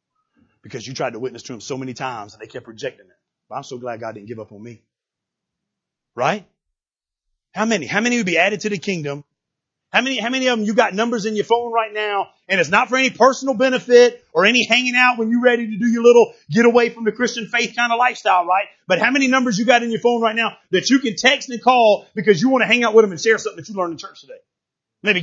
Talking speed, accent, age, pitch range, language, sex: 270 wpm, American, 30-49, 155-235 Hz, English, male